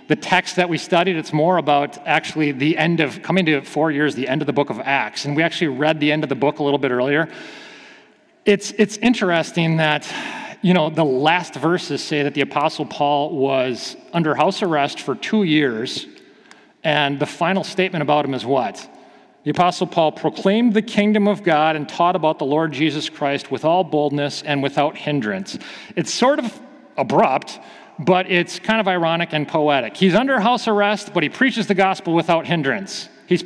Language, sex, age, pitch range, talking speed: English, male, 40-59, 150-205 Hz, 195 wpm